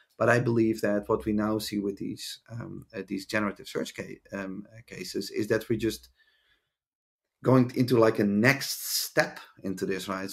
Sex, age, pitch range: male, 30-49, 105-120 Hz